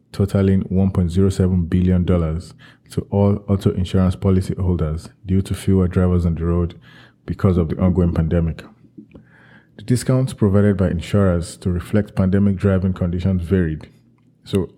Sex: male